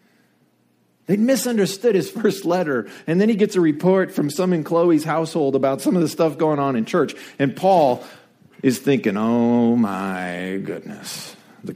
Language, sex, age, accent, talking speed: English, male, 40-59, American, 170 wpm